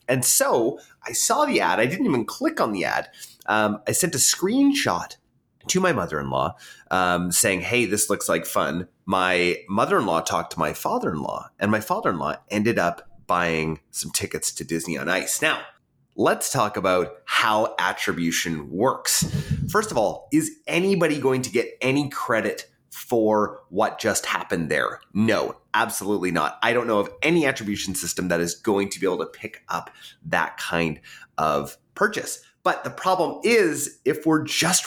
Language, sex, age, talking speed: English, male, 30-49, 170 wpm